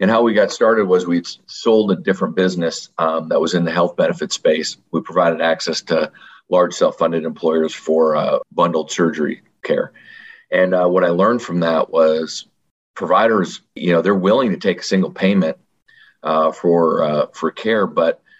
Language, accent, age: English, American, 40-59